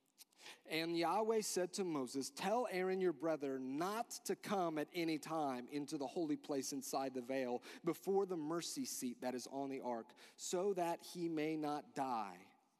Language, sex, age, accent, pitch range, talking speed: English, male, 40-59, American, 135-175 Hz, 175 wpm